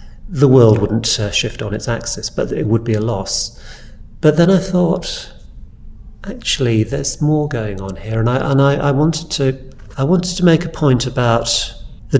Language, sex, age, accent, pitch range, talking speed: English, male, 40-59, British, 100-120 Hz, 190 wpm